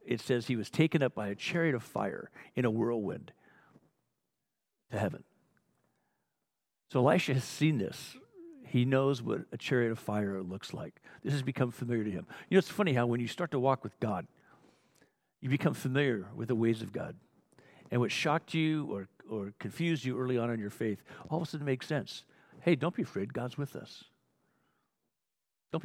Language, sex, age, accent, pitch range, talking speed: English, male, 60-79, American, 120-170 Hz, 195 wpm